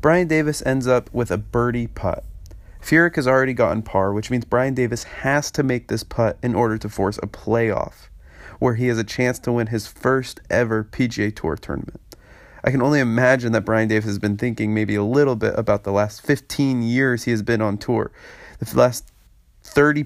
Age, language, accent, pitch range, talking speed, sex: 30-49, English, American, 105-125 Hz, 205 wpm, male